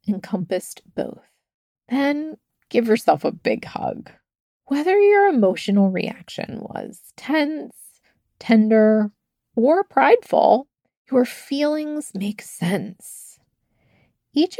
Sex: female